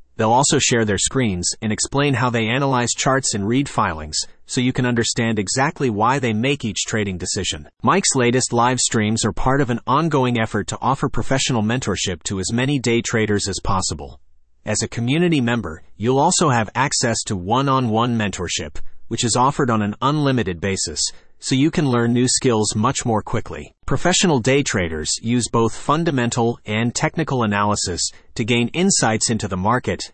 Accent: American